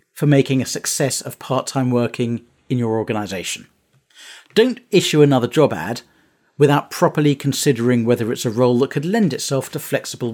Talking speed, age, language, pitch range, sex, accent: 165 wpm, 40-59, English, 120-170 Hz, male, British